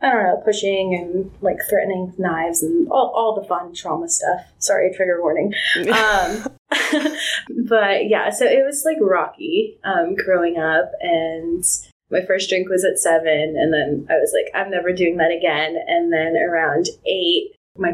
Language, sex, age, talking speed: English, female, 20-39, 170 wpm